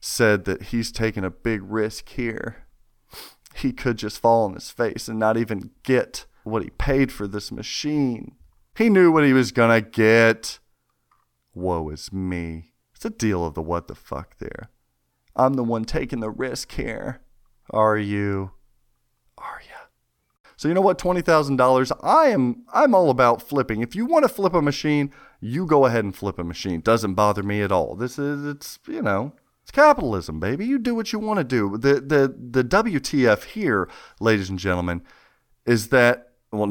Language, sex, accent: English, male, American